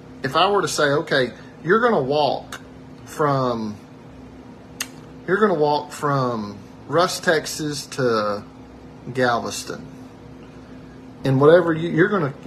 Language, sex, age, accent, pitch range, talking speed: English, male, 40-59, American, 125-145 Hz, 125 wpm